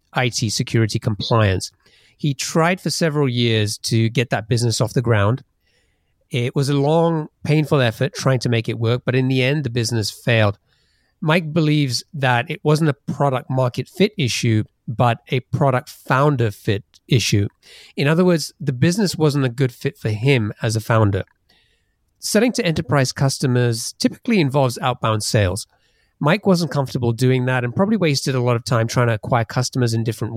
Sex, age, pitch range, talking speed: male, 30-49, 115-145 Hz, 175 wpm